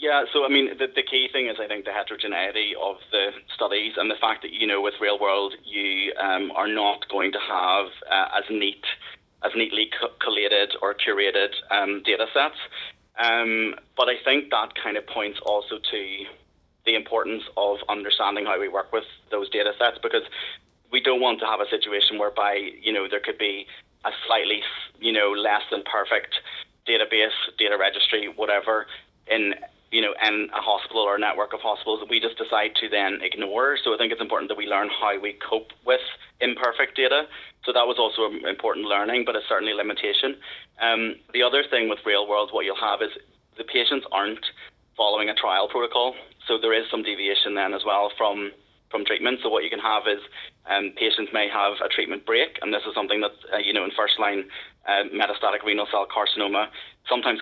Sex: male